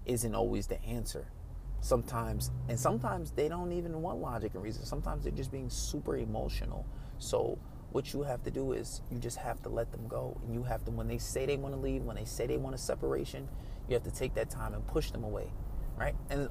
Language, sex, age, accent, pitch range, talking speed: English, male, 30-49, American, 115-140 Hz, 235 wpm